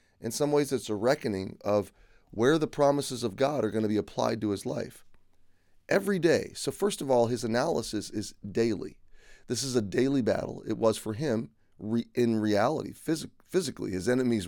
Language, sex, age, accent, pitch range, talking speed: English, male, 30-49, American, 105-130 Hz, 190 wpm